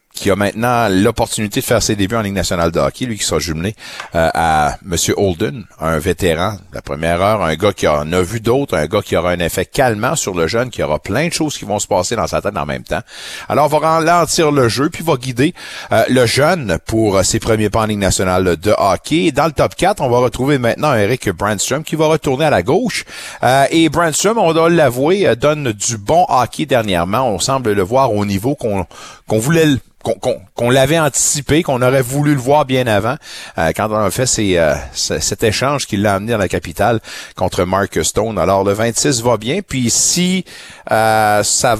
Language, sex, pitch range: French, male, 100-145 Hz